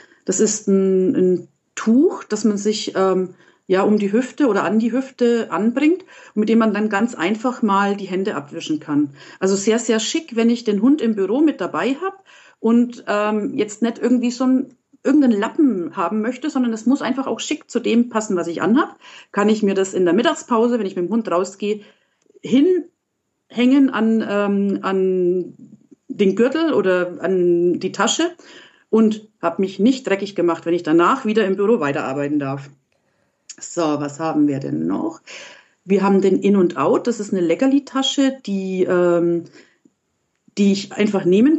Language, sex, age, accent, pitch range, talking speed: German, female, 50-69, German, 185-245 Hz, 180 wpm